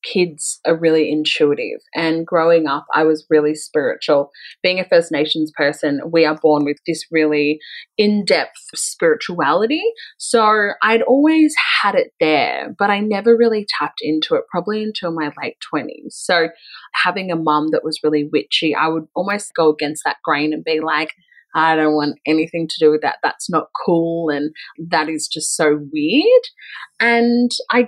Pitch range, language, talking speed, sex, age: 155-225 Hz, English, 170 wpm, female, 20-39